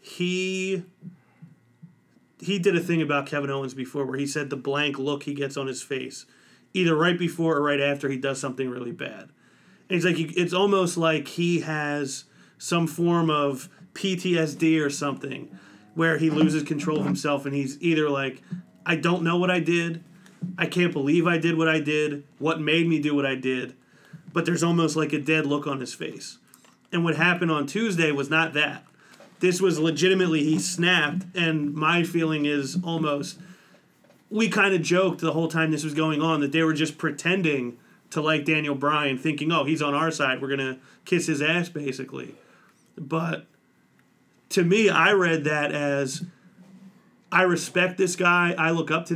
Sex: male